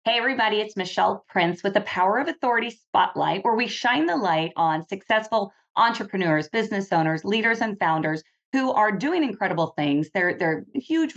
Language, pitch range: English, 165-230 Hz